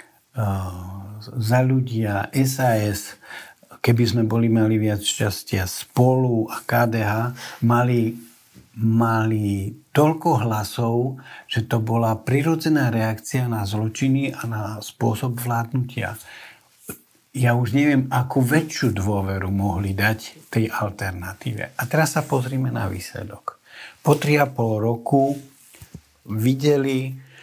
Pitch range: 105-130 Hz